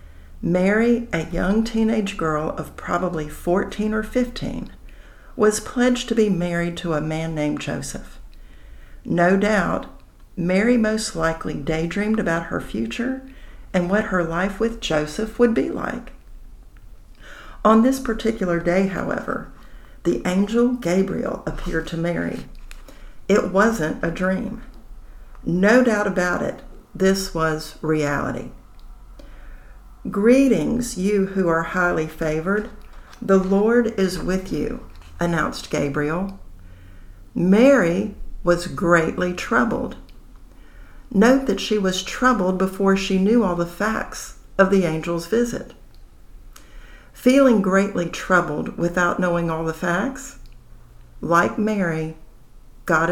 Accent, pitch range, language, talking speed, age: American, 165-215 Hz, English, 115 wpm, 60-79